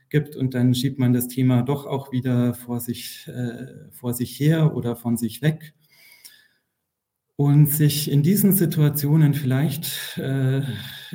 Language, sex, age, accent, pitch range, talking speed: German, male, 40-59, German, 120-140 Hz, 145 wpm